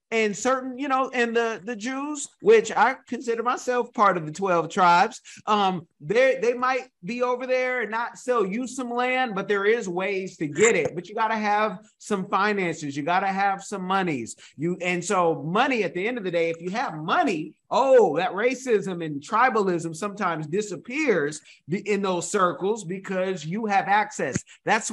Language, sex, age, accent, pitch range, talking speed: English, male, 30-49, American, 165-235 Hz, 190 wpm